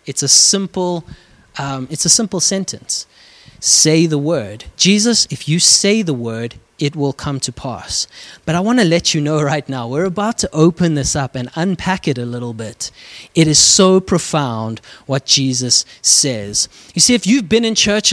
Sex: male